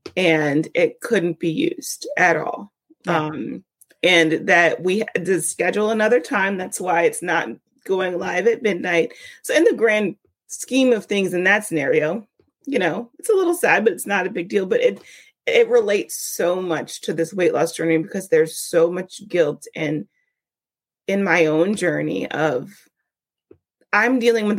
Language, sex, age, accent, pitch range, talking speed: English, female, 30-49, American, 165-220 Hz, 175 wpm